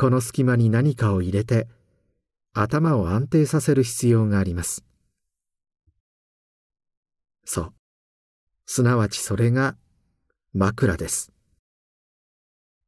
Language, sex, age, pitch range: Japanese, male, 50-69, 90-125 Hz